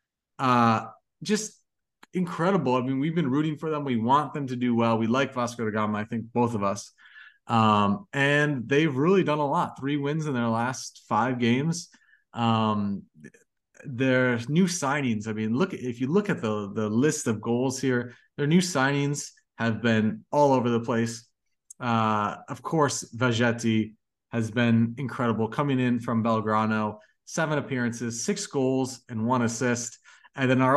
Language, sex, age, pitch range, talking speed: English, male, 30-49, 110-135 Hz, 170 wpm